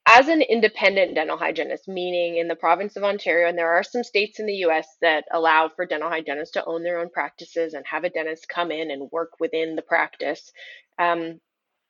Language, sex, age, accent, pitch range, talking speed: English, female, 20-39, American, 165-210 Hz, 205 wpm